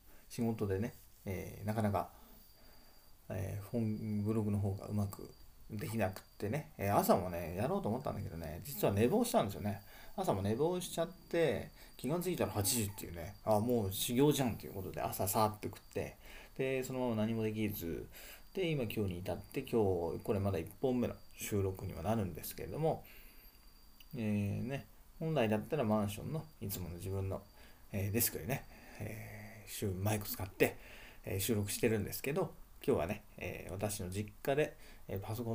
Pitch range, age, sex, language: 100-125 Hz, 20-39, male, Japanese